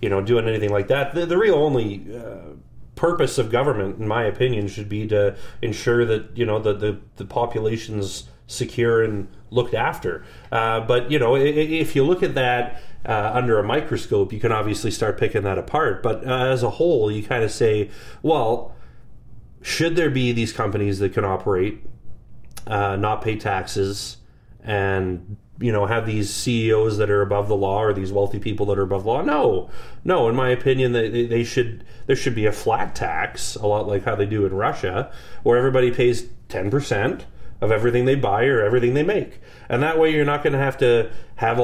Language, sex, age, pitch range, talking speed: English, male, 30-49, 105-125 Hz, 200 wpm